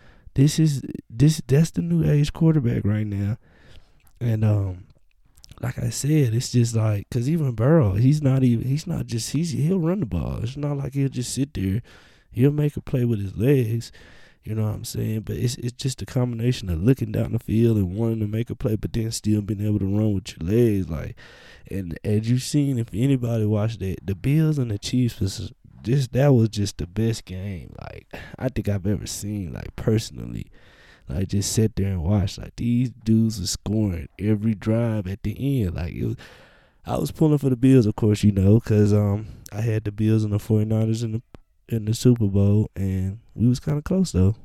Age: 20-39